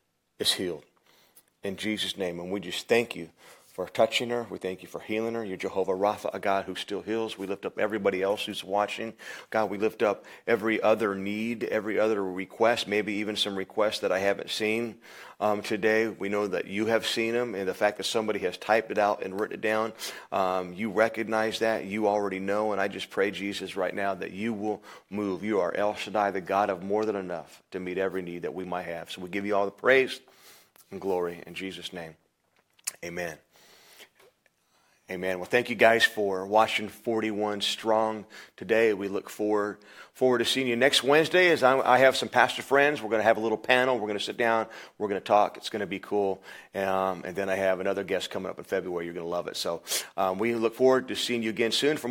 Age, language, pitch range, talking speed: 40-59, English, 95-115 Hz, 225 wpm